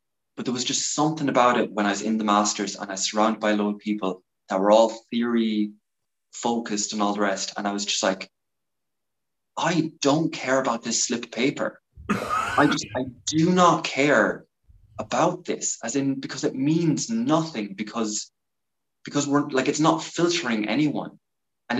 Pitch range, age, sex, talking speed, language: 105-140 Hz, 20-39, male, 180 wpm, English